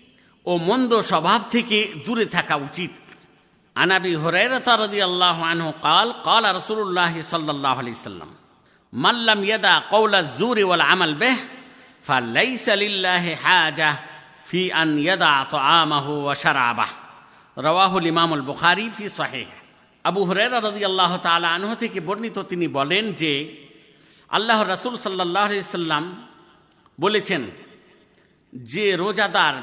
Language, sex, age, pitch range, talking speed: Bengali, male, 50-69, 165-220 Hz, 30 wpm